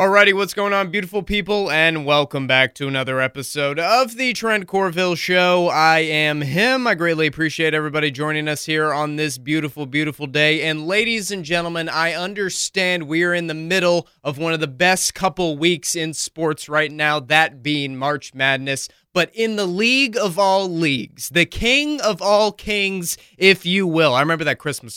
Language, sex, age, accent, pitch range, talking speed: English, male, 20-39, American, 145-185 Hz, 185 wpm